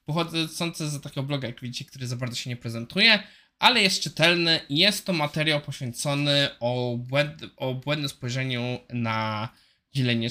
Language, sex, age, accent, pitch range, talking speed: Polish, male, 20-39, native, 130-160 Hz, 150 wpm